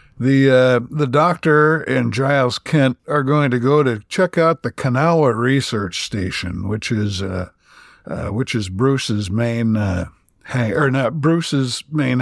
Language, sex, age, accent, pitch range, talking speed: English, male, 60-79, American, 105-155 Hz, 155 wpm